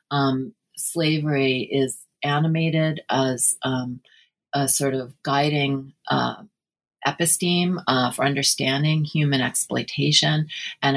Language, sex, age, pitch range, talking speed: English, female, 40-59, 125-145 Hz, 100 wpm